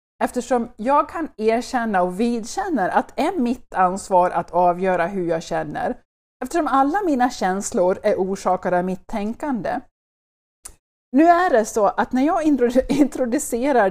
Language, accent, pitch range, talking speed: English, Swedish, 185-245 Hz, 140 wpm